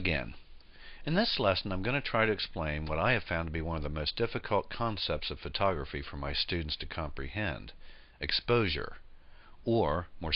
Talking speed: 185 wpm